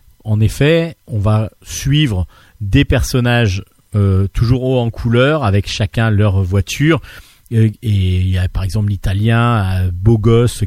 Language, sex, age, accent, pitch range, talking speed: French, male, 40-59, French, 100-125 Hz, 150 wpm